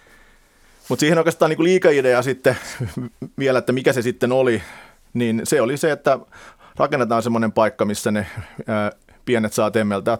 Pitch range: 105-125 Hz